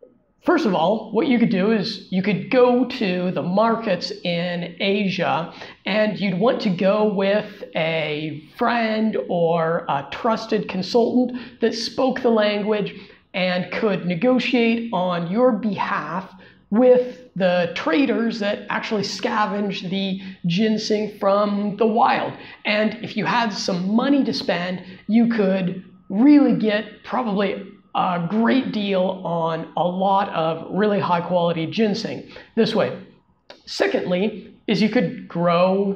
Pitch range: 190-230 Hz